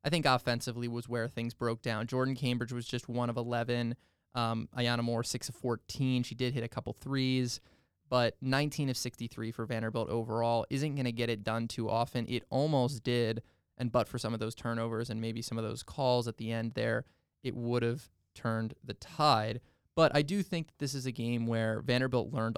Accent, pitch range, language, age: American, 115-125 Hz, English, 20-39